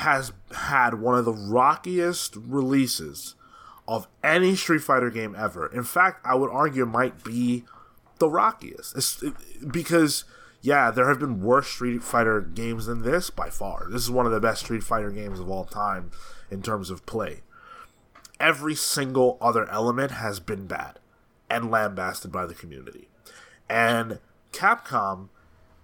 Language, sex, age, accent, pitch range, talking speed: English, male, 20-39, American, 115-150 Hz, 155 wpm